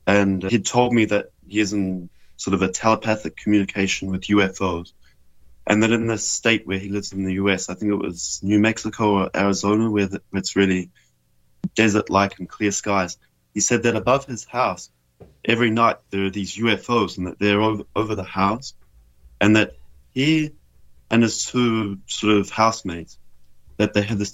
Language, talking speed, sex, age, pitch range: English, 180 wpm, male, 20-39, 90-110 Hz